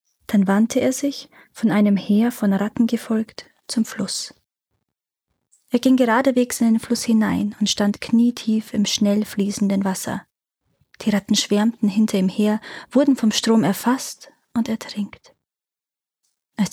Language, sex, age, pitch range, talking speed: German, female, 20-39, 195-245 Hz, 140 wpm